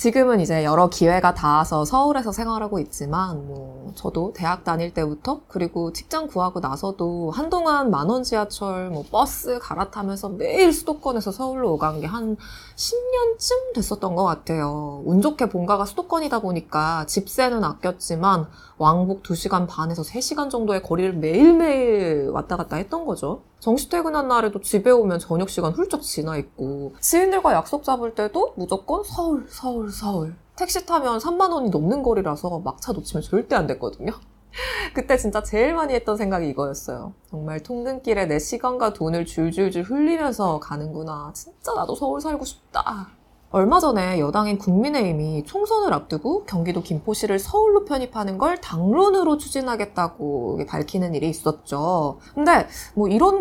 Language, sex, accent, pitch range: Korean, female, native, 170-280 Hz